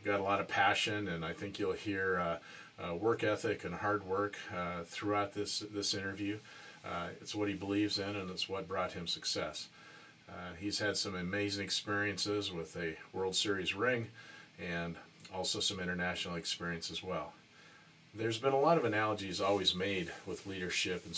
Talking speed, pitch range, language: 180 wpm, 95-105 Hz, English